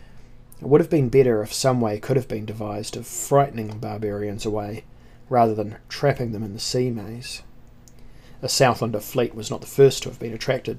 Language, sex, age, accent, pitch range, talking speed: English, male, 30-49, Australian, 110-125 Hz, 200 wpm